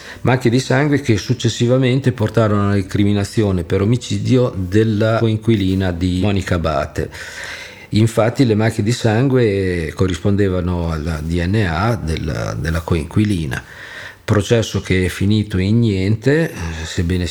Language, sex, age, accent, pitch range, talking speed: Italian, male, 50-69, native, 95-115 Hz, 110 wpm